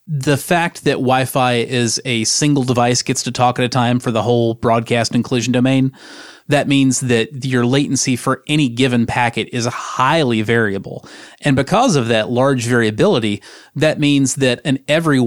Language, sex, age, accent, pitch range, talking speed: English, male, 30-49, American, 120-145 Hz, 170 wpm